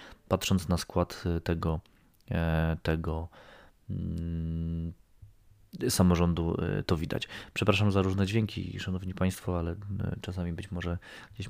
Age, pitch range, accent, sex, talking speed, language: 20-39, 85-105 Hz, native, male, 100 wpm, Polish